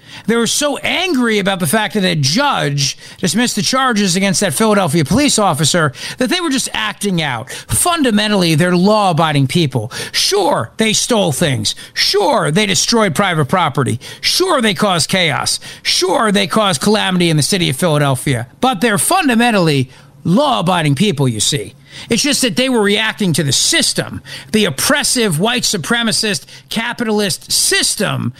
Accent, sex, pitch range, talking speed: American, male, 160-235 Hz, 155 wpm